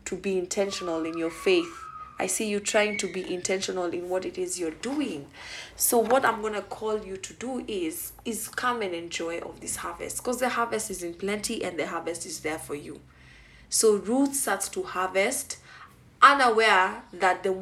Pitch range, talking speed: 180-240 Hz, 185 wpm